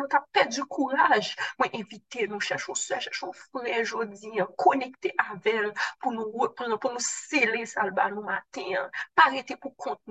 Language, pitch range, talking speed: French, 190-270 Hz, 170 wpm